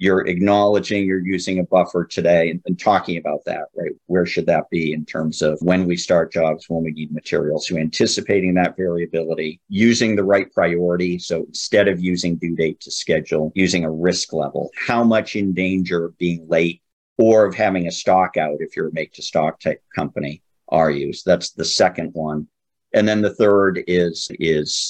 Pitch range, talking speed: 85-100 Hz, 195 wpm